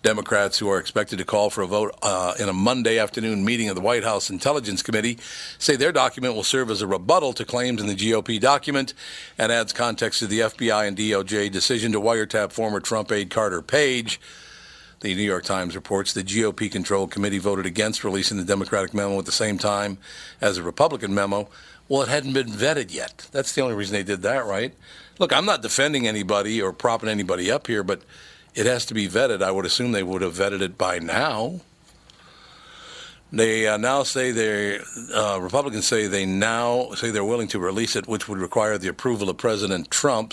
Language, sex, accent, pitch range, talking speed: English, male, American, 100-115 Hz, 205 wpm